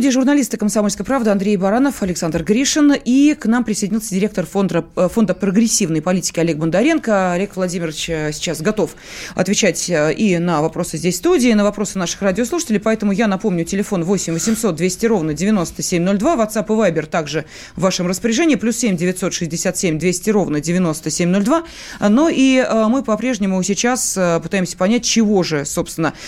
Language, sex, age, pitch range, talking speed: Russian, female, 30-49, 175-225 Hz, 155 wpm